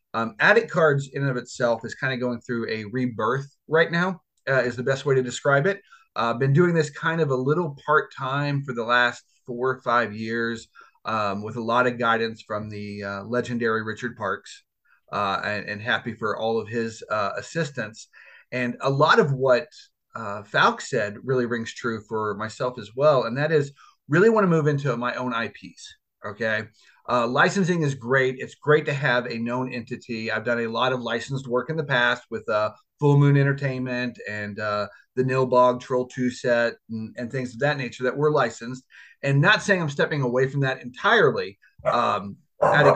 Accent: American